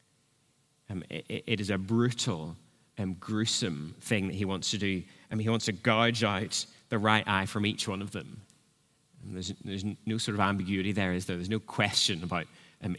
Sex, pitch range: male, 100-130 Hz